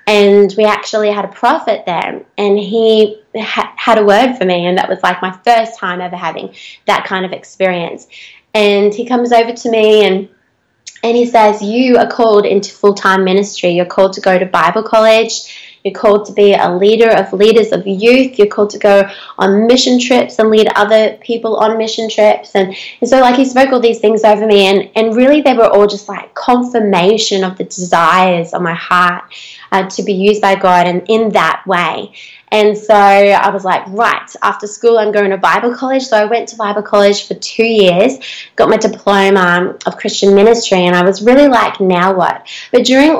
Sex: female